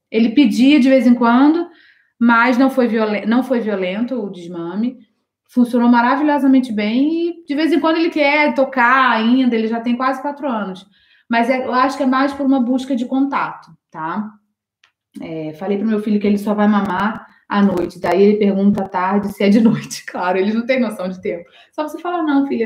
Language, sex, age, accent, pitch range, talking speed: Portuguese, female, 20-39, Brazilian, 200-255 Hz, 210 wpm